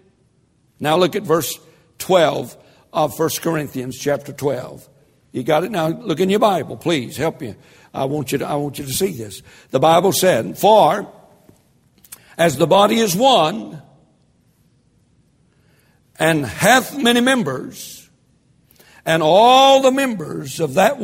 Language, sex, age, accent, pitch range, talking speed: English, male, 60-79, American, 145-210 Hz, 135 wpm